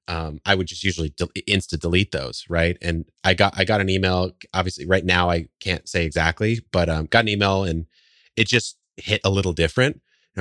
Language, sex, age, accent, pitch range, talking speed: English, male, 20-39, American, 85-100 Hz, 210 wpm